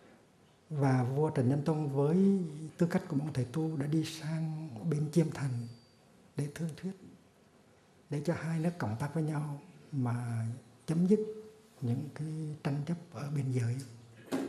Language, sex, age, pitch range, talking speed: Vietnamese, male, 60-79, 115-145 Hz, 160 wpm